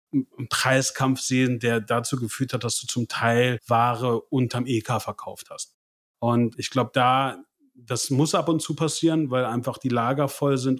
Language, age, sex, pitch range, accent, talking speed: German, 30-49, male, 120-135 Hz, German, 180 wpm